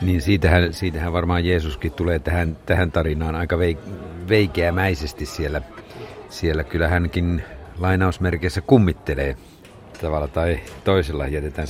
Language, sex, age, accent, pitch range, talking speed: Finnish, male, 50-69, native, 80-95 Hz, 110 wpm